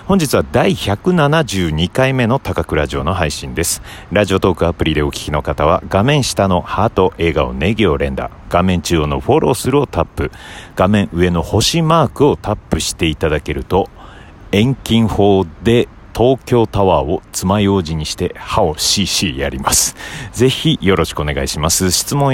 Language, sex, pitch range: Japanese, male, 80-105 Hz